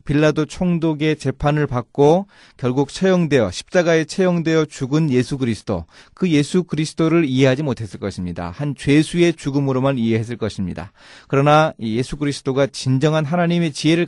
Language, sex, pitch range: Korean, male, 110-165 Hz